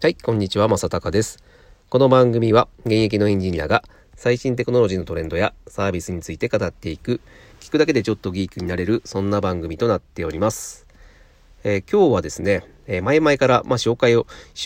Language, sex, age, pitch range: Japanese, male, 40-59, 90-125 Hz